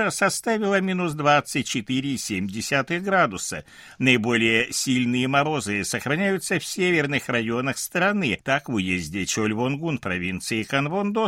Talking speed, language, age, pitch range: 95 wpm, Russian, 60-79, 115-180 Hz